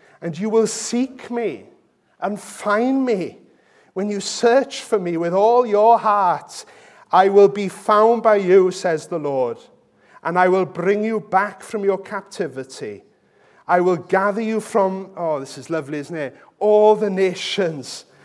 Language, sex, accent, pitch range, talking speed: English, male, British, 175-220 Hz, 160 wpm